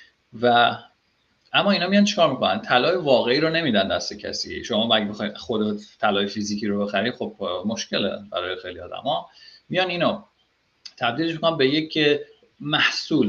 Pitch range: 105-160 Hz